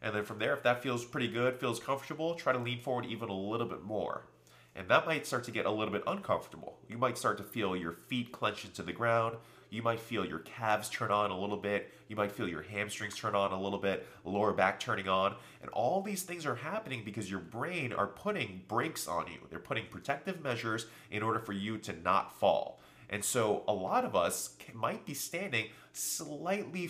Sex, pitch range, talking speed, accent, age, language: male, 100-130 Hz, 225 wpm, American, 30-49, English